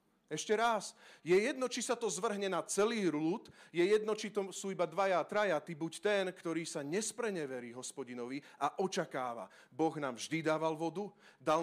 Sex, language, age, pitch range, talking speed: male, Slovak, 30-49, 135-195 Hz, 170 wpm